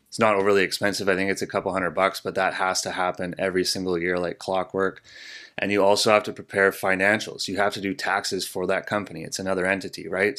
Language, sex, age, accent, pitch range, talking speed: English, male, 20-39, American, 90-105 Hz, 230 wpm